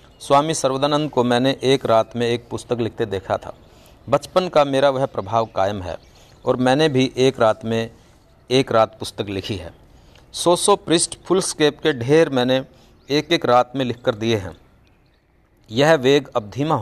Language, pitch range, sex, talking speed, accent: Hindi, 105-145 Hz, male, 175 wpm, native